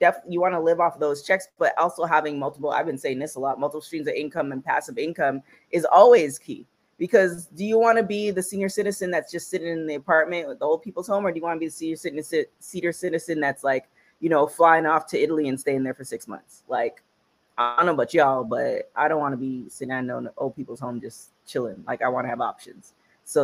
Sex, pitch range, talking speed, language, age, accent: female, 130-160 Hz, 250 wpm, English, 20-39, American